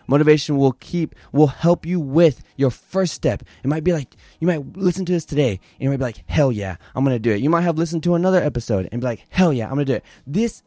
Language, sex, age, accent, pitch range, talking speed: English, male, 20-39, American, 115-155 Hz, 270 wpm